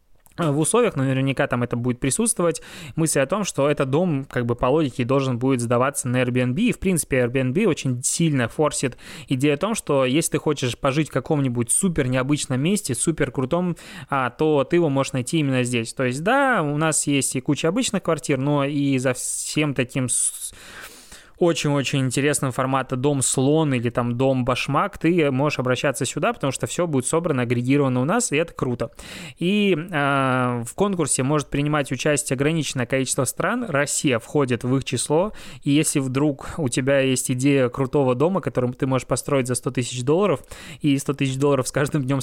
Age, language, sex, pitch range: 20-39, Russian, male, 130-155 Hz